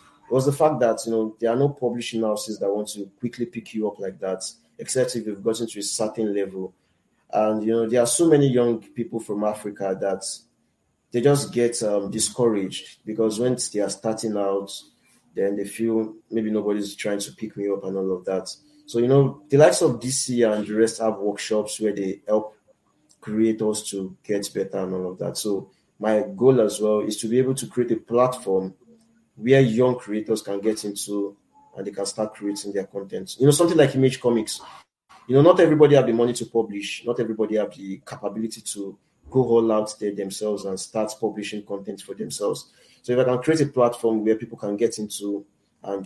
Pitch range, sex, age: 100-120 Hz, male, 20-39